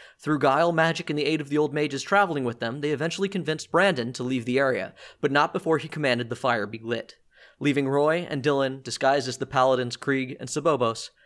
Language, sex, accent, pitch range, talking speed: English, male, American, 130-150 Hz, 220 wpm